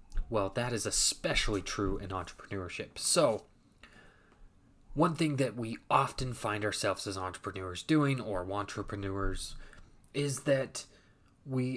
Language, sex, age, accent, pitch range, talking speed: English, male, 20-39, American, 95-125 Hz, 115 wpm